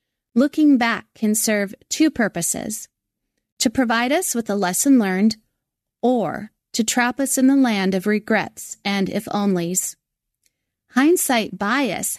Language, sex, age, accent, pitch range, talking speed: English, female, 30-49, American, 195-245 Hz, 135 wpm